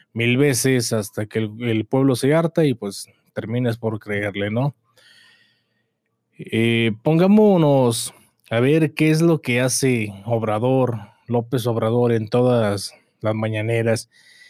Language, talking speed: Spanish, 130 wpm